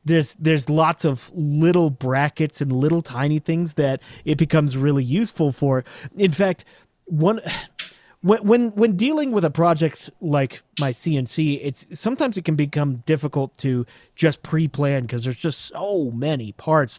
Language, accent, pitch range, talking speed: English, American, 135-170 Hz, 160 wpm